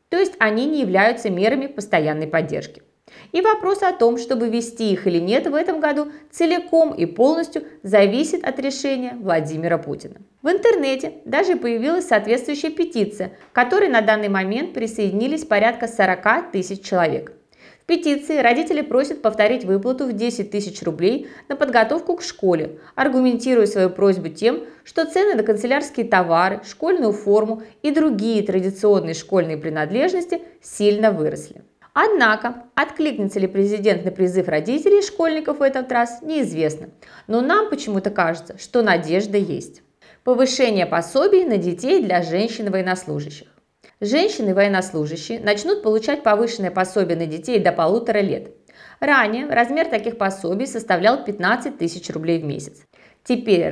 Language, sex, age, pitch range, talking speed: Russian, female, 20-39, 185-280 Hz, 135 wpm